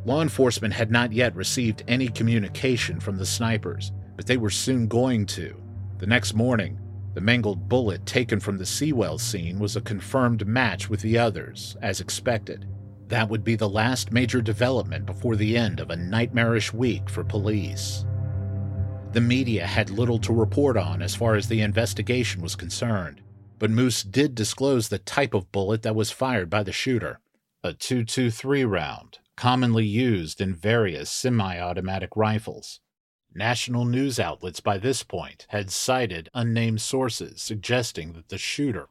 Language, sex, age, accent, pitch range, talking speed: English, male, 50-69, American, 100-120 Hz, 160 wpm